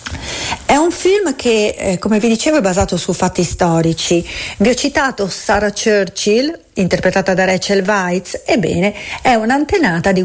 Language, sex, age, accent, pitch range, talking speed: Italian, female, 40-59, native, 185-235 Hz, 145 wpm